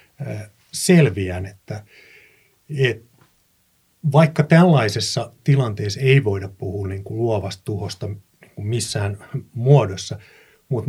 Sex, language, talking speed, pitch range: male, Finnish, 90 wpm, 100-140 Hz